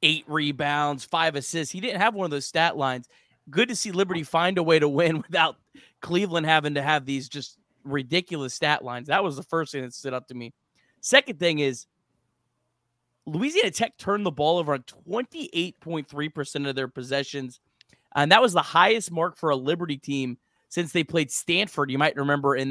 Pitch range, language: 140-175 Hz, English